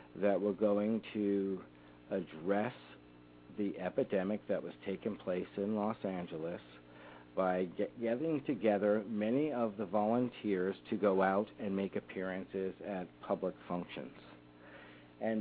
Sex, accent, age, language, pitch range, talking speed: male, American, 50-69, English, 85-115 Hz, 120 wpm